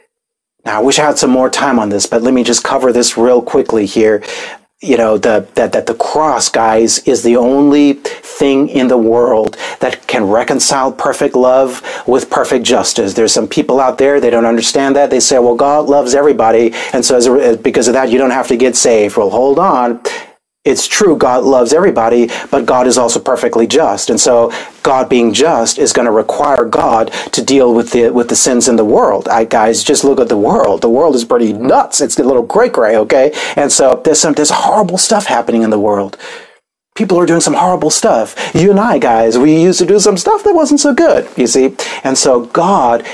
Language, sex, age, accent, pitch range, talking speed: English, male, 40-59, American, 120-175 Hz, 220 wpm